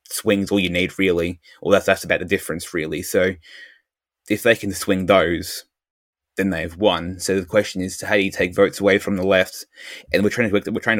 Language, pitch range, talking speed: English, 90-105 Hz, 230 wpm